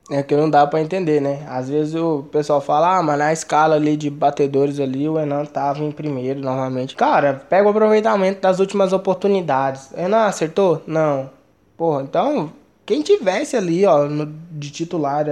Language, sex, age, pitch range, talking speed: Portuguese, male, 20-39, 155-200 Hz, 175 wpm